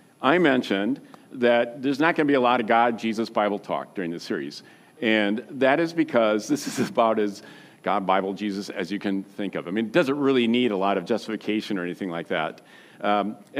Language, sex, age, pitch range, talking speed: English, male, 50-69, 105-135 Hz, 200 wpm